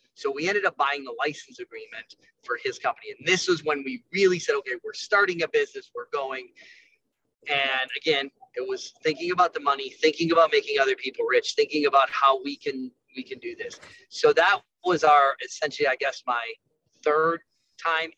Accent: American